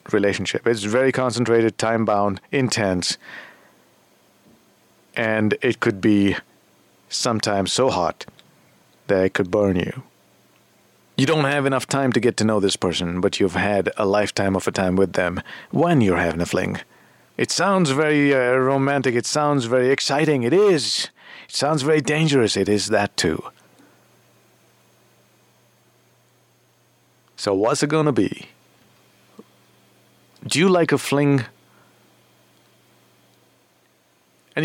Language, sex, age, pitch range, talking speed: English, male, 50-69, 100-140 Hz, 130 wpm